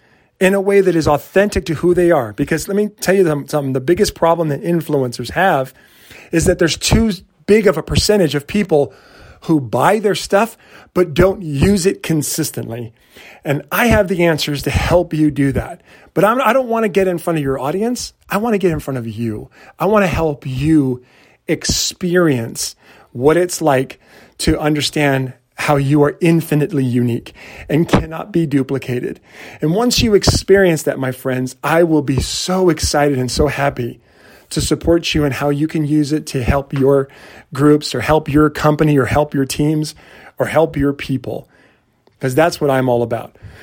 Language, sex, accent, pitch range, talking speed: English, male, American, 135-175 Hz, 185 wpm